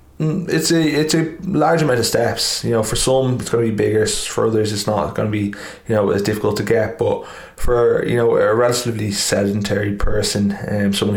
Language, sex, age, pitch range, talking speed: English, male, 20-39, 100-115 Hz, 215 wpm